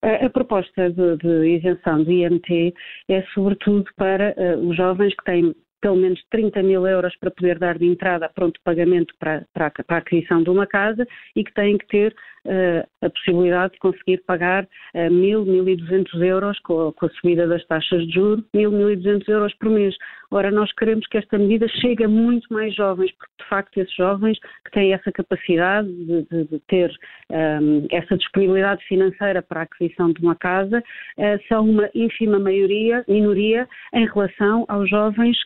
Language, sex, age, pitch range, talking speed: Portuguese, female, 40-59, 180-215 Hz, 185 wpm